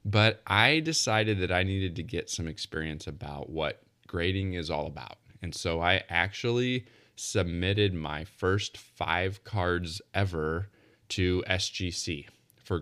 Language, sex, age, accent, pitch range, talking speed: English, male, 20-39, American, 85-105 Hz, 135 wpm